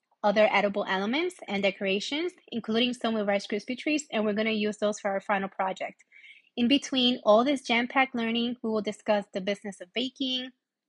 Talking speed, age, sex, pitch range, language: 180 wpm, 20-39, female, 205-260 Hz, English